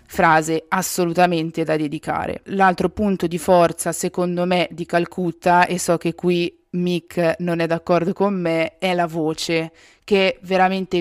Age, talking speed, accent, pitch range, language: 20-39, 145 wpm, native, 165-185 Hz, Italian